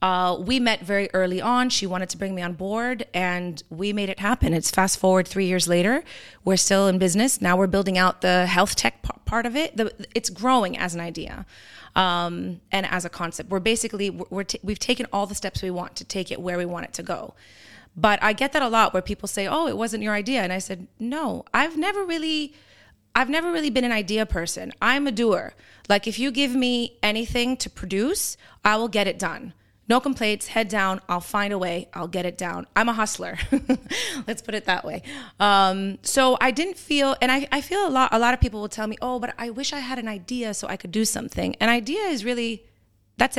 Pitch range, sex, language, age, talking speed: 190-255 Hz, female, English, 30-49, 225 wpm